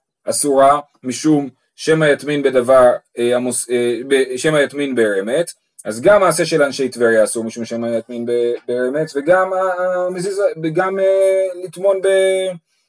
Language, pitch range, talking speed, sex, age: Hebrew, 135-190 Hz, 100 wpm, male, 30-49